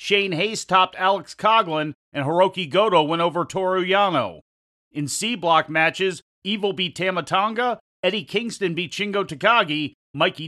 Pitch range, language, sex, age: 155-190 Hz, English, male, 40-59